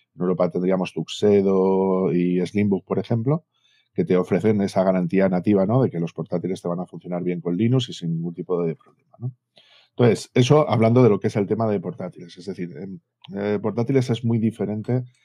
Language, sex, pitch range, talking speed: Spanish, male, 90-110 Hz, 200 wpm